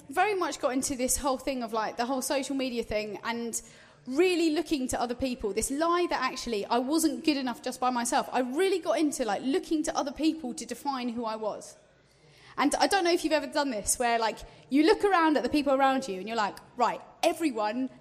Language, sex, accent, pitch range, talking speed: English, female, British, 230-295 Hz, 230 wpm